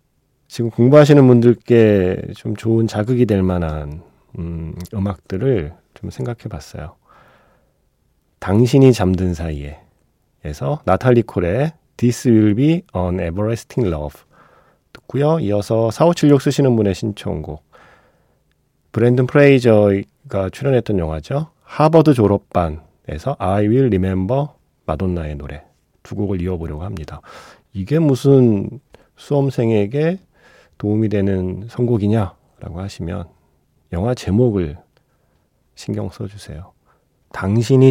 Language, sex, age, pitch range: Korean, male, 40-59, 90-130 Hz